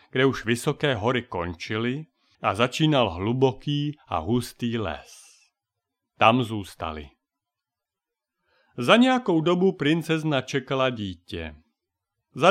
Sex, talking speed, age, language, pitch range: male, 95 wpm, 40-59, Czech, 115-150 Hz